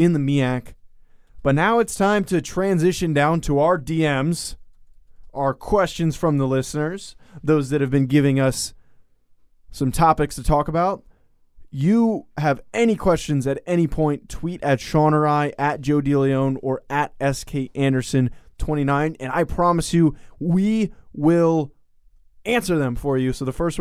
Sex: male